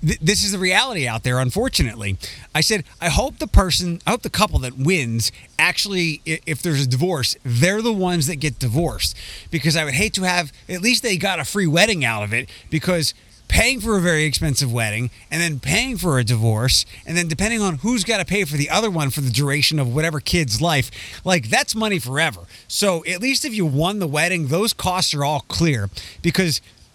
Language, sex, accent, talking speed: English, male, American, 215 wpm